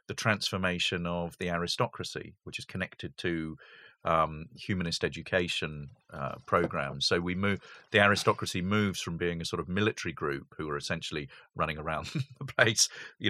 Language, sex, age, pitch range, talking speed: English, male, 40-59, 80-100 Hz, 160 wpm